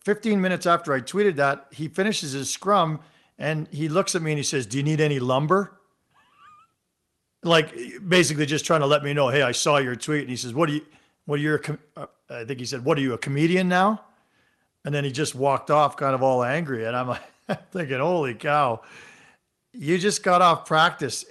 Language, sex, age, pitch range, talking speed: English, male, 50-69, 130-170 Hz, 215 wpm